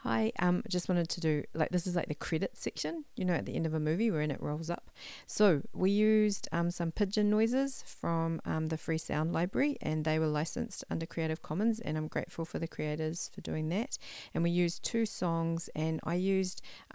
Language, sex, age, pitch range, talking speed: English, female, 40-59, 155-180 Hz, 225 wpm